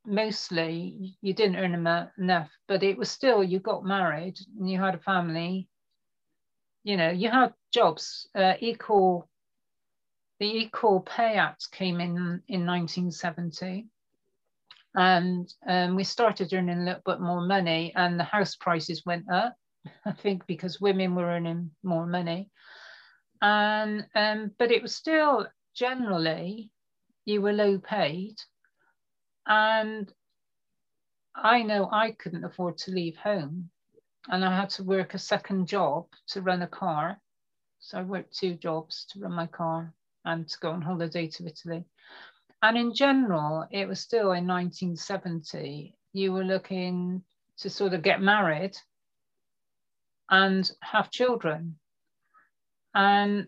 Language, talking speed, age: English, 140 wpm, 50-69